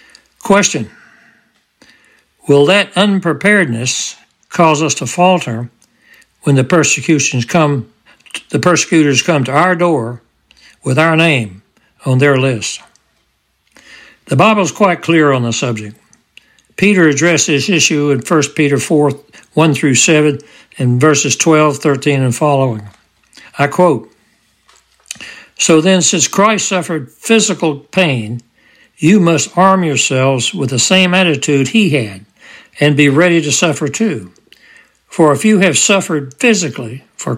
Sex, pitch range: male, 135-170 Hz